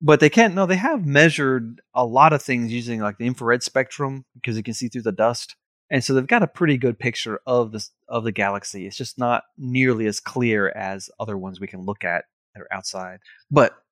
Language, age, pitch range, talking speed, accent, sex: English, 30-49, 105-135 Hz, 230 wpm, American, male